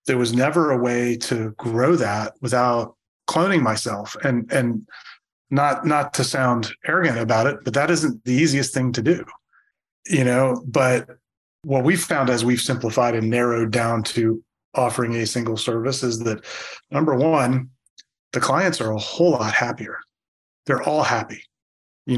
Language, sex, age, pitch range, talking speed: English, male, 30-49, 115-140 Hz, 160 wpm